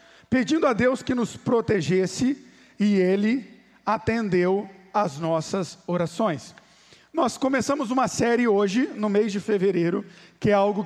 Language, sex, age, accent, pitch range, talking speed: Portuguese, male, 50-69, Brazilian, 205-250 Hz, 135 wpm